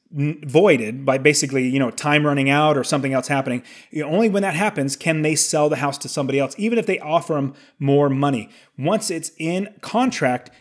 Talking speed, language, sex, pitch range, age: 210 wpm, English, male, 140-175 Hz, 30-49